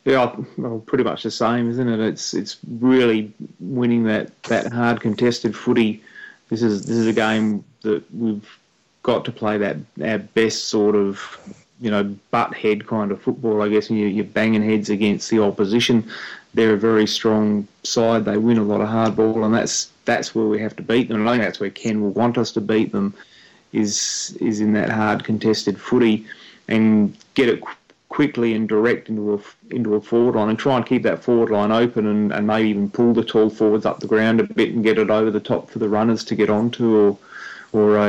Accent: Australian